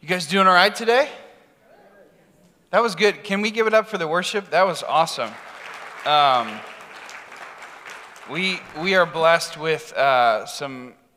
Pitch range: 120-165 Hz